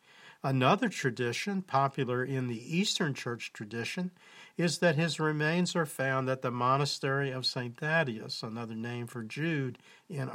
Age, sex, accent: 50-69, male, American